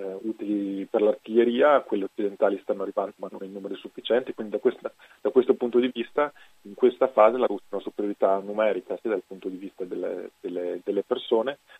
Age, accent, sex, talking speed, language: 30-49, native, male, 195 wpm, Italian